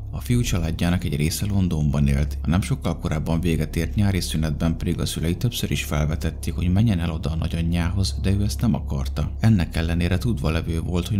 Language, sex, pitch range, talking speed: Hungarian, male, 75-90 Hz, 205 wpm